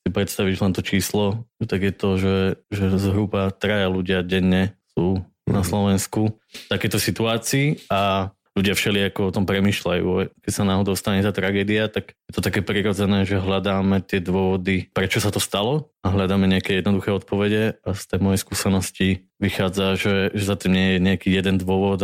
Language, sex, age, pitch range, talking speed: Slovak, male, 20-39, 95-105 Hz, 180 wpm